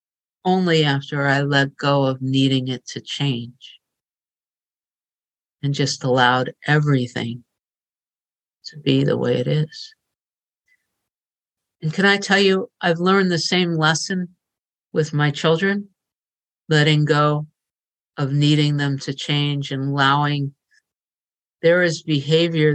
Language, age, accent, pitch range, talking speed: English, 50-69, American, 140-160 Hz, 120 wpm